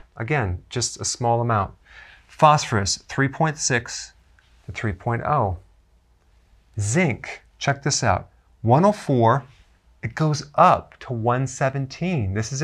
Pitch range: 110-145 Hz